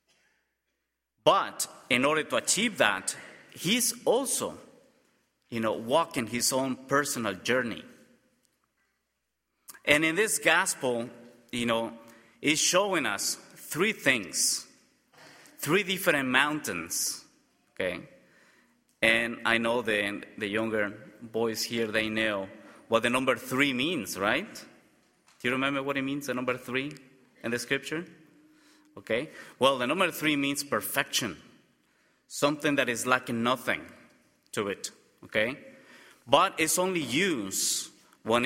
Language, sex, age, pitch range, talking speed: English, male, 30-49, 115-140 Hz, 120 wpm